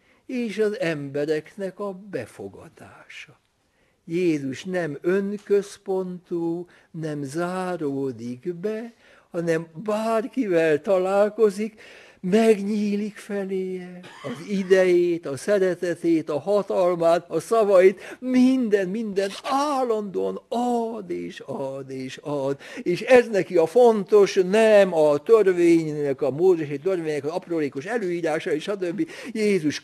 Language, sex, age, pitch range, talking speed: Hungarian, male, 60-79, 145-205 Hz, 100 wpm